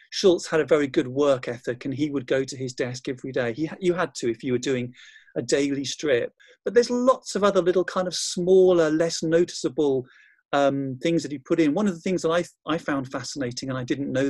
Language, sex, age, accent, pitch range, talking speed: English, male, 40-59, British, 135-180 Hz, 235 wpm